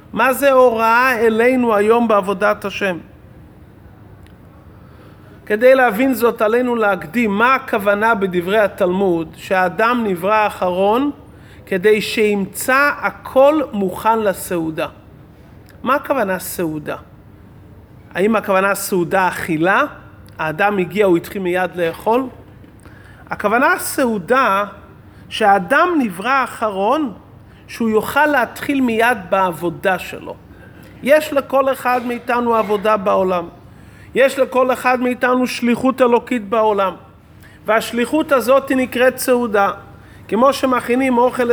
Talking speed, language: 100 wpm, Hebrew